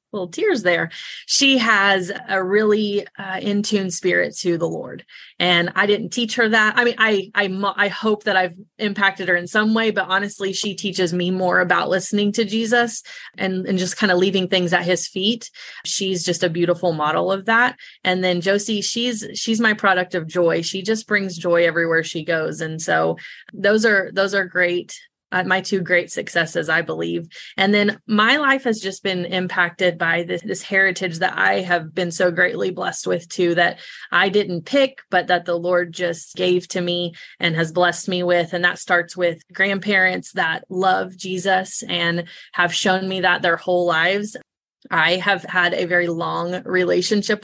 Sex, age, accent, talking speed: female, 20-39, American, 190 wpm